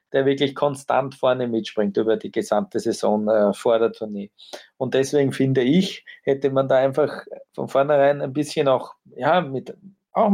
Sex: male